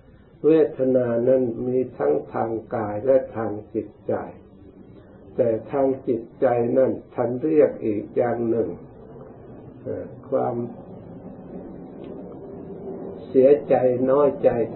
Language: Thai